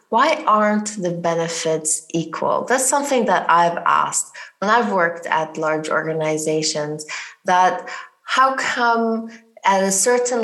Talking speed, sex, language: 125 wpm, female, English